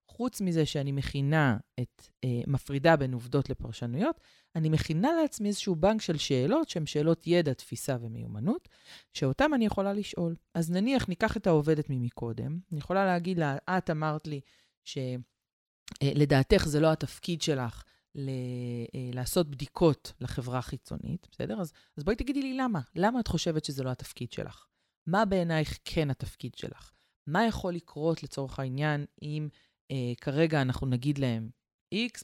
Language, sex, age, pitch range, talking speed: Hebrew, female, 30-49, 135-185 Hz, 150 wpm